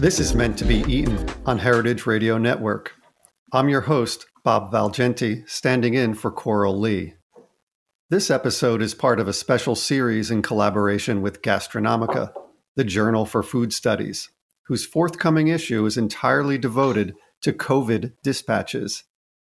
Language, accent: English, American